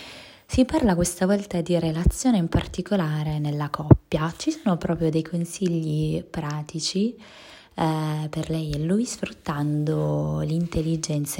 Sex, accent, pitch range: female, native, 155-185 Hz